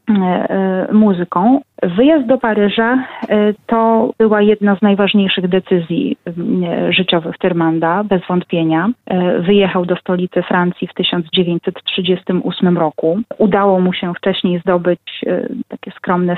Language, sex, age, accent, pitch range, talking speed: Polish, female, 30-49, native, 180-210 Hz, 105 wpm